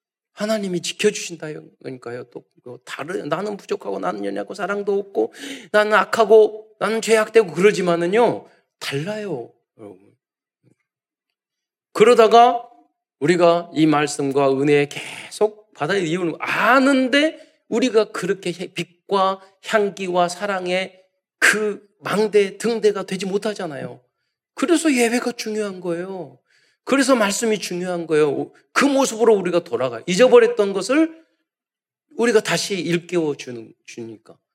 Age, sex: 40-59, male